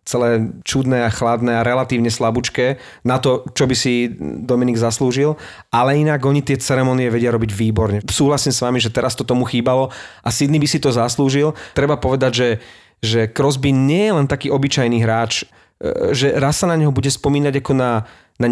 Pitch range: 120-140 Hz